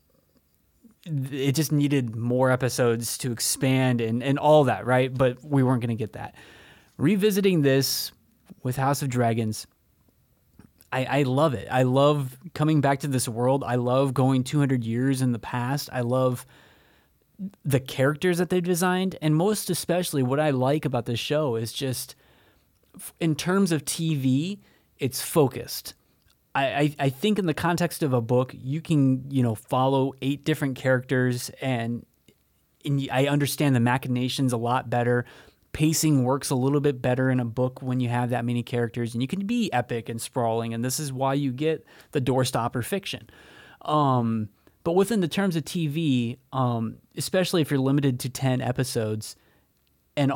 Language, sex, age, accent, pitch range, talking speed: English, male, 20-39, American, 125-150 Hz, 170 wpm